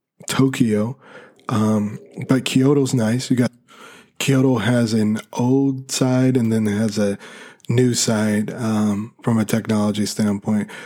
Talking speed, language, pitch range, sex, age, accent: 135 wpm, English, 105-125 Hz, male, 20-39, American